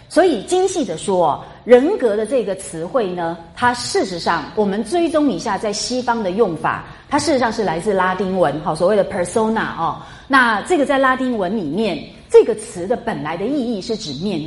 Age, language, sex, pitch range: 30-49, Chinese, female, 180-260 Hz